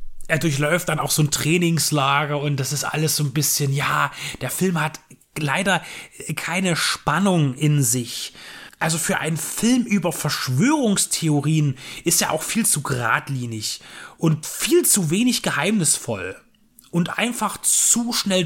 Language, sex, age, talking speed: German, male, 30-49, 145 wpm